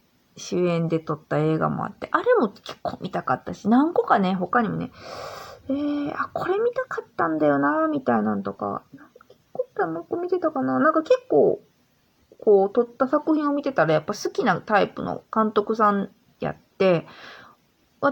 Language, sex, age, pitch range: Japanese, female, 20-39, 175-285 Hz